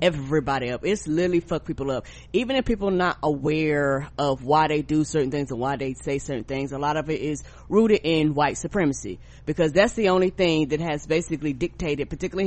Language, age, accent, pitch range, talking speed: English, 20-39, American, 155-215 Hz, 205 wpm